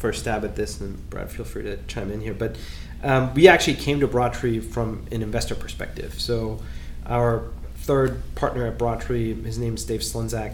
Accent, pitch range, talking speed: American, 100-120 Hz, 195 wpm